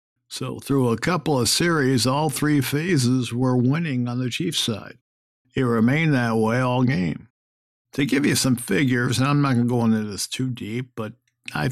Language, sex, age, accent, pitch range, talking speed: English, male, 60-79, American, 110-130 Hz, 195 wpm